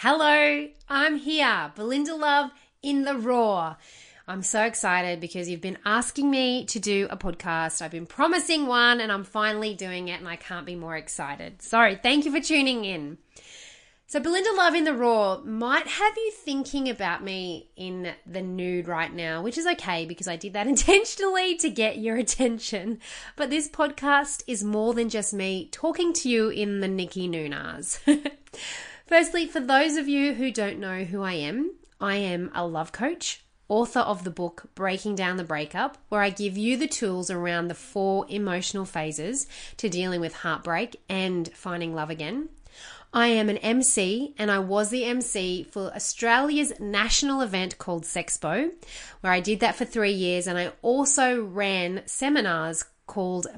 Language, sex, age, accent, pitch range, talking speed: English, female, 30-49, Australian, 180-275 Hz, 175 wpm